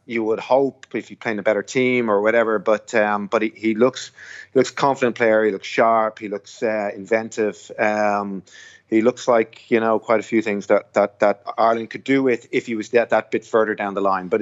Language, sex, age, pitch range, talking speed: English, male, 30-49, 100-115 Hz, 235 wpm